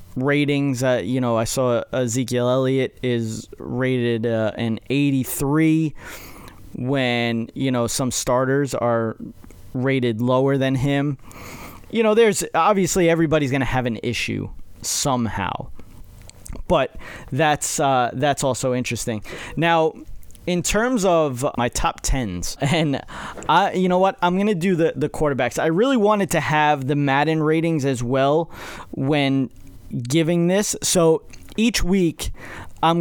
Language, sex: English, male